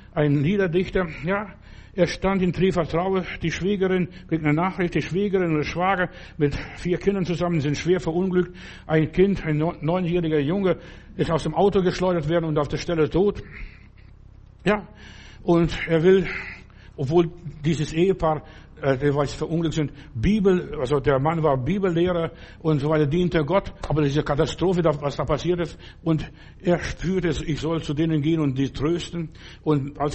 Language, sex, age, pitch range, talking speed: German, male, 60-79, 150-175 Hz, 165 wpm